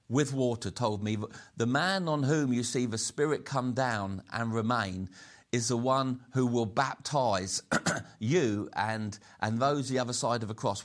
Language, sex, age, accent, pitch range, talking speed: English, male, 50-69, British, 105-135 Hz, 175 wpm